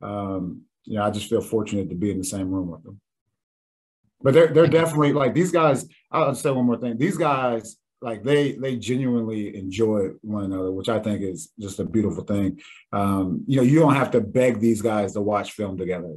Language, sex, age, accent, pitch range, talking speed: English, male, 30-49, American, 105-125 Hz, 220 wpm